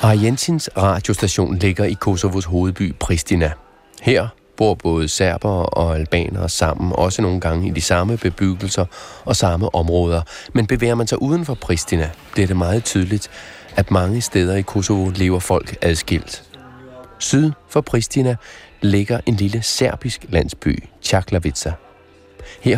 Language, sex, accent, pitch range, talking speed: Danish, male, native, 90-110 Hz, 140 wpm